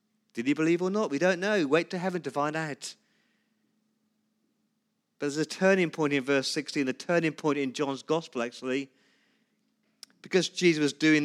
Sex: male